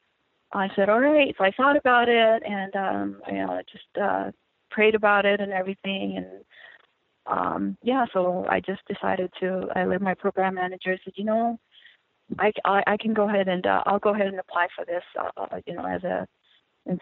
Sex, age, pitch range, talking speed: female, 30-49, 185-220 Hz, 205 wpm